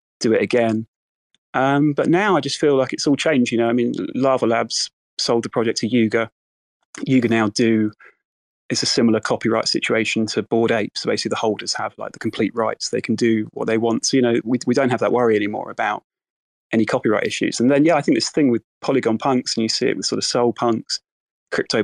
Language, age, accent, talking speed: English, 30-49, British, 230 wpm